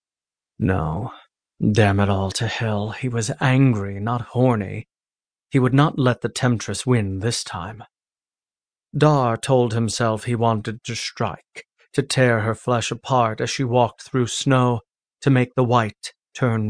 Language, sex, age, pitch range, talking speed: English, male, 30-49, 115-130 Hz, 150 wpm